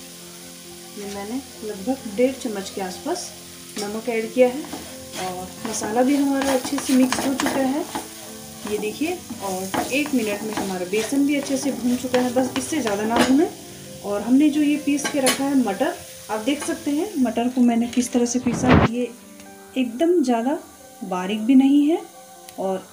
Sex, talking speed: female, 175 wpm